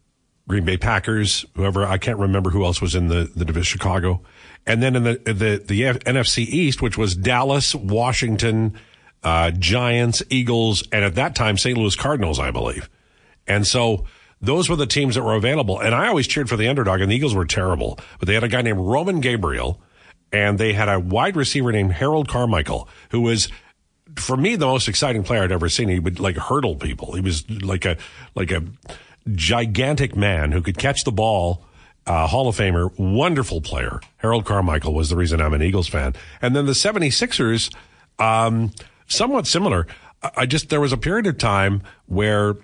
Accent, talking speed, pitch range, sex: American, 195 wpm, 90-125 Hz, male